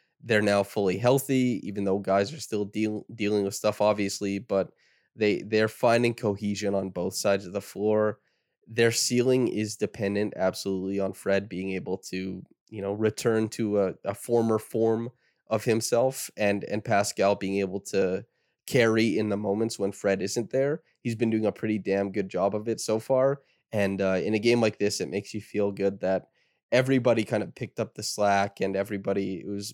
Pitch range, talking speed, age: 100-115 Hz, 190 wpm, 20-39